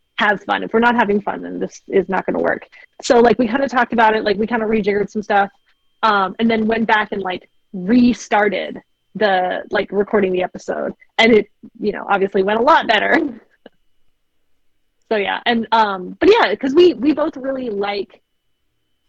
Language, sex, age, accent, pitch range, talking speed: English, female, 30-49, American, 205-240 Hz, 200 wpm